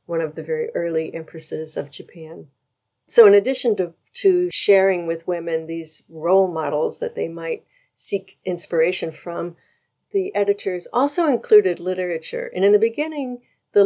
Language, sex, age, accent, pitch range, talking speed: English, female, 50-69, American, 170-265 Hz, 150 wpm